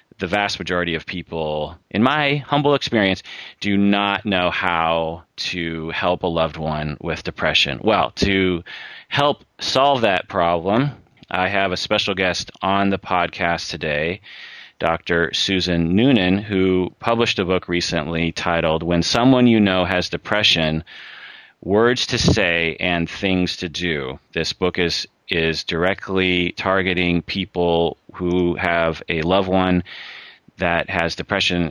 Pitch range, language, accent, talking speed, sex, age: 85-95 Hz, English, American, 135 wpm, male, 30-49